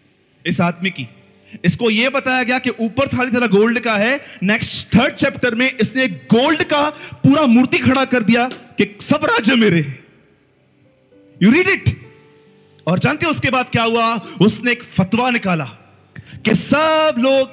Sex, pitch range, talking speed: male, 185-240 Hz, 70 wpm